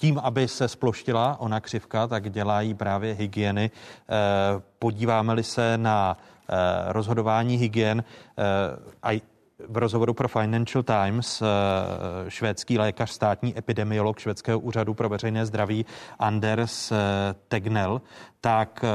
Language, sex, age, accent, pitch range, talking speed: Czech, male, 30-49, native, 110-130 Hz, 100 wpm